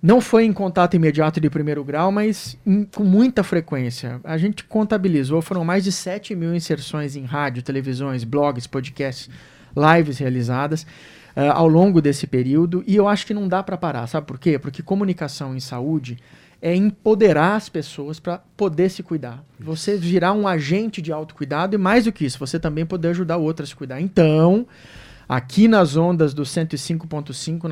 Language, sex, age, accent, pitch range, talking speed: Portuguese, male, 20-39, Brazilian, 145-185 Hz, 175 wpm